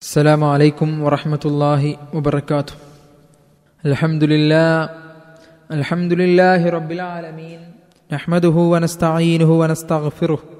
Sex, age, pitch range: male, 20-39, 165-195 Hz